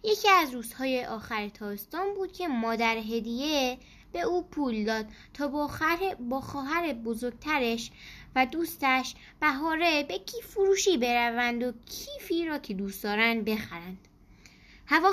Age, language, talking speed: 10-29, Persian, 130 wpm